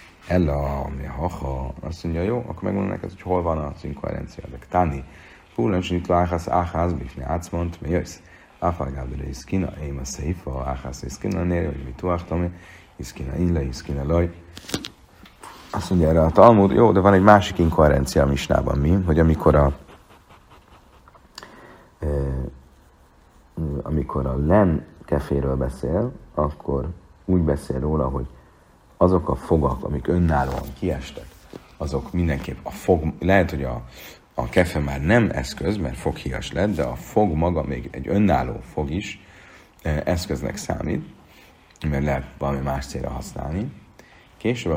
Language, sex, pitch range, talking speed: Hungarian, male, 70-90 Hz, 135 wpm